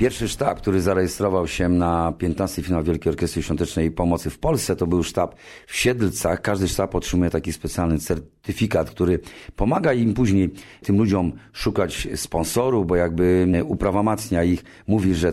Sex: male